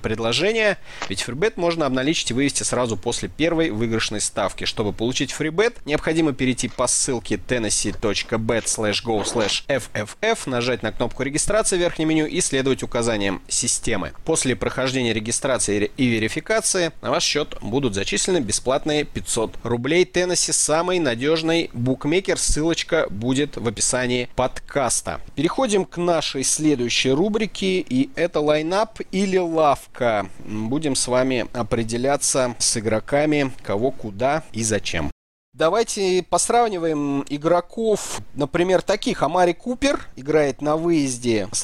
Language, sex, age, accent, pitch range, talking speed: Russian, male, 30-49, native, 115-165 Hz, 120 wpm